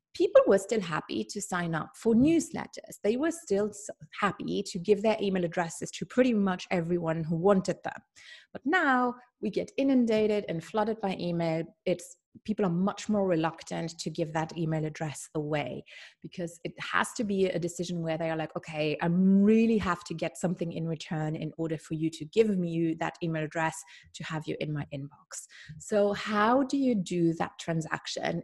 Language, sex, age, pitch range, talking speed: English, female, 30-49, 165-215 Hz, 190 wpm